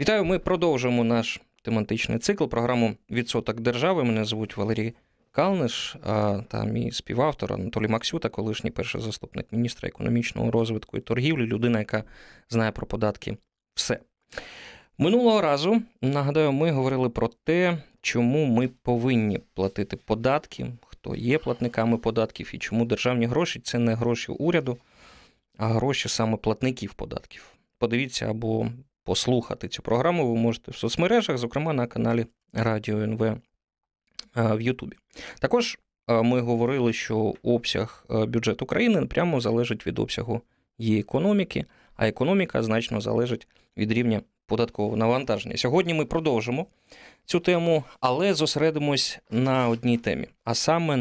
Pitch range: 110-135 Hz